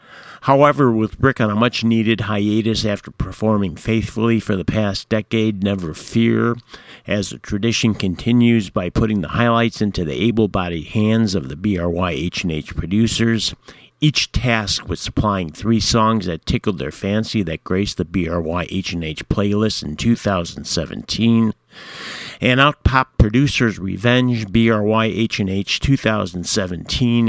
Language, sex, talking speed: English, male, 130 wpm